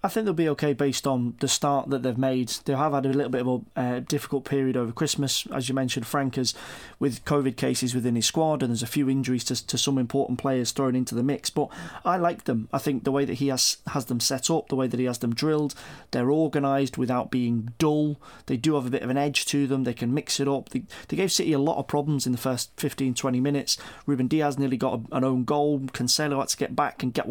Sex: male